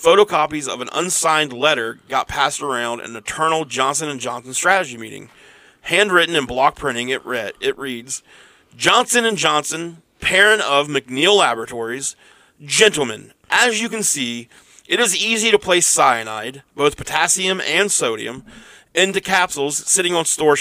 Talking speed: 150 wpm